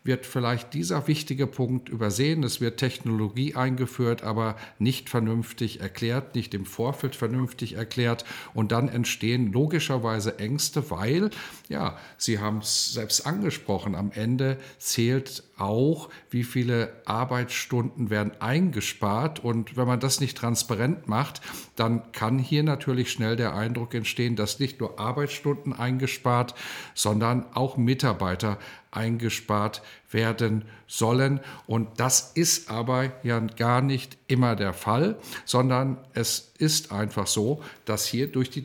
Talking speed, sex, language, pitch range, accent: 130 wpm, male, German, 115-135 Hz, German